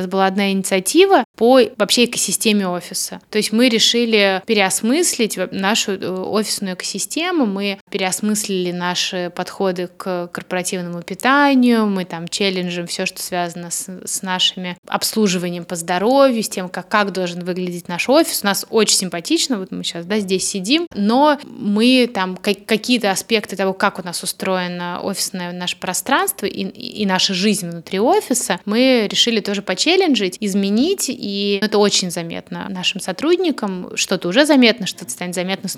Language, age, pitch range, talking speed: Russian, 20-39, 185-225 Hz, 155 wpm